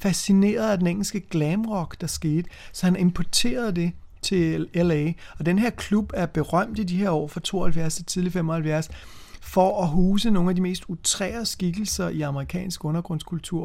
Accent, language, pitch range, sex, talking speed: native, Danish, 150-180 Hz, male, 170 wpm